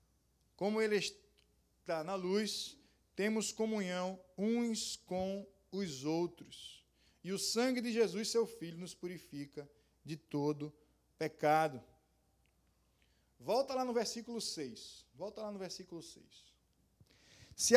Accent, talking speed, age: Brazilian, 115 wpm, 20-39